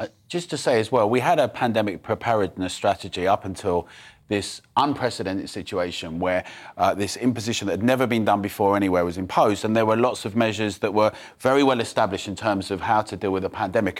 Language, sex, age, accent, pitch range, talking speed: English, male, 30-49, British, 105-130 Hz, 215 wpm